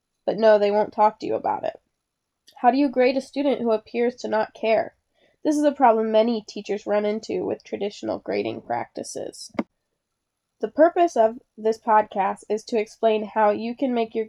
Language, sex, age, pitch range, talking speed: English, female, 10-29, 210-245 Hz, 190 wpm